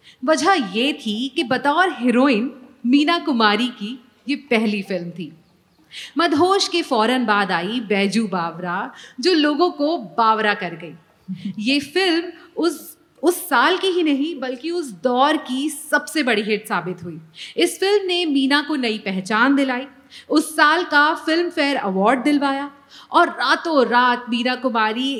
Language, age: Urdu, 40-59